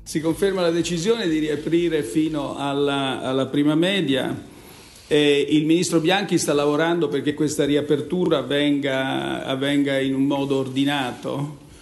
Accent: native